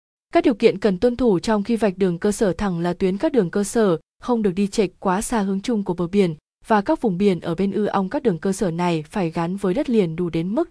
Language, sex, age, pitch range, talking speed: Vietnamese, female, 20-39, 185-230 Hz, 285 wpm